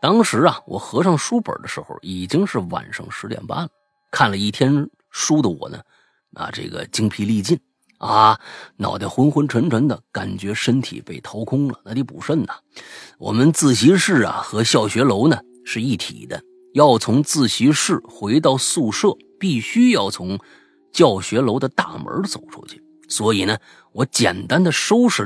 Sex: male